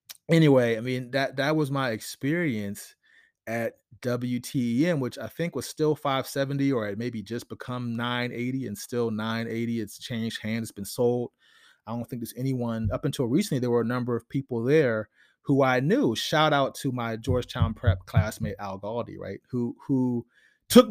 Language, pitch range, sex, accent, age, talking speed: English, 110-135 Hz, male, American, 30-49, 180 wpm